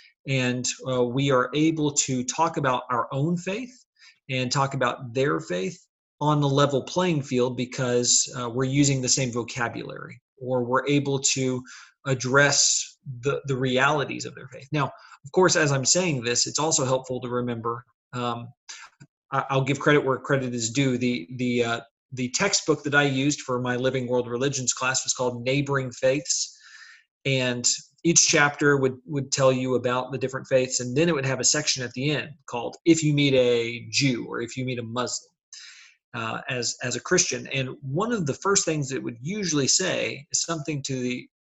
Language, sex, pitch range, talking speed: English, male, 125-150 Hz, 185 wpm